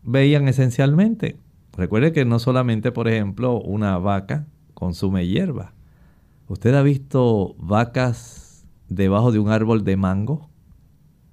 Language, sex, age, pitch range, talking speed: Spanish, male, 50-69, 105-140 Hz, 115 wpm